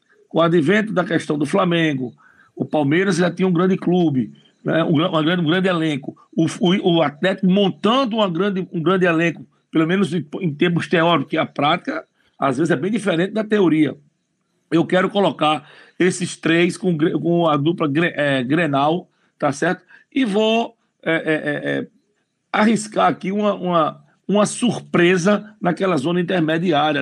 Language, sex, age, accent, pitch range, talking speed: Portuguese, male, 60-79, Brazilian, 155-190 Hz, 160 wpm